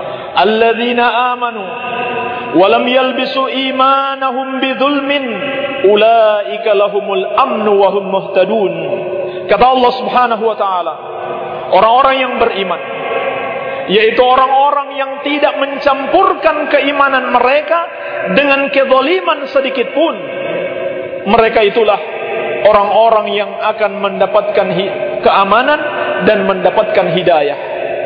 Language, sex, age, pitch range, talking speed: Indonesian, male, 50-69, 215-275 Hz, 75 wpm